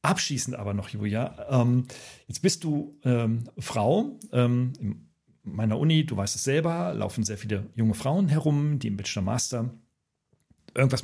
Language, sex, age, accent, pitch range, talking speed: German, male, 40-59, German, 110-145 Hz, 160 wpm